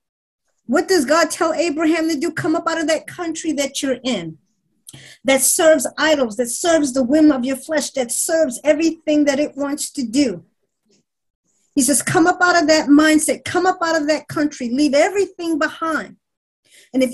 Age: 50-69